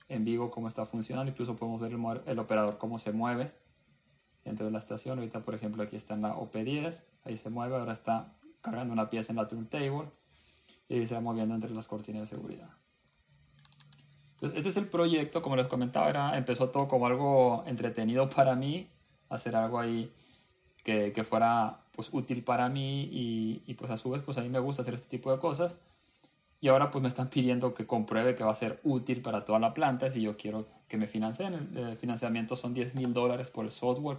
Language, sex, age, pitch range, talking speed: Spanish, male, 20-39, 115-135 Hz, 210 wpm